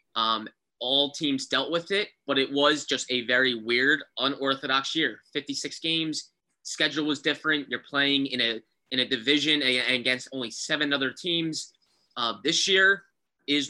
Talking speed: 160 wpm